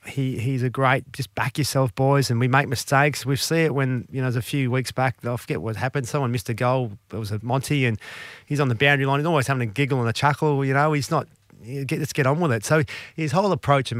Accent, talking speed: Australian, 280 wpm